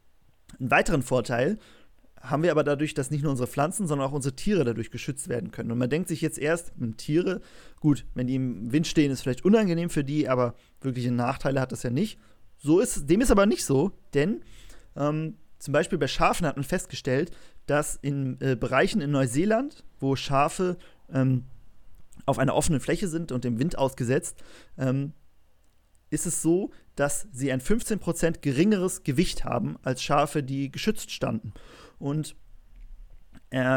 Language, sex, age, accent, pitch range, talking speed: German, male, 30-49, German, 130-160 Hz, 175 wpm